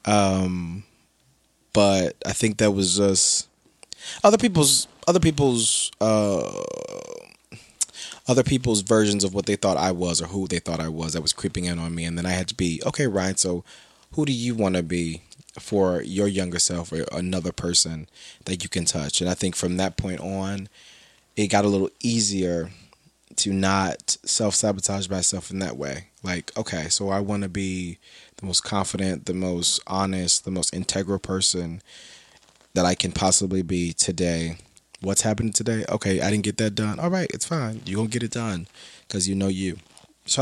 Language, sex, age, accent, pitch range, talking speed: English, male, 20-39, American, 90-110 Hz, 185 wpm